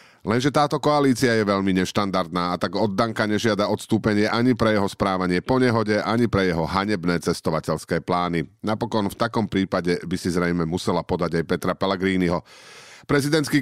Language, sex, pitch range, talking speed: Slovak, male, 95-125 Hz, 160 wpm